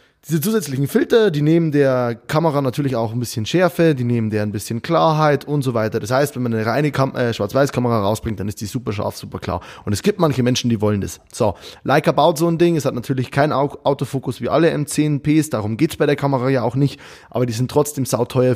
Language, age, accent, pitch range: German, 20-39, German, 120-160 Hz